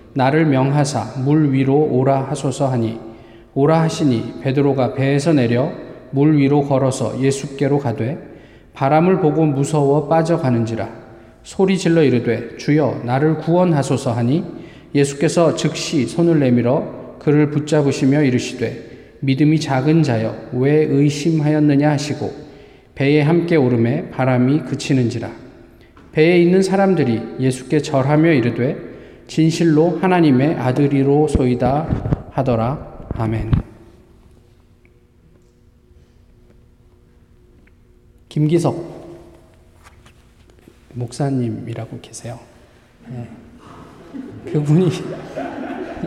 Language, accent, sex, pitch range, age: Korean, native, male, 120-160 Hz, 20-39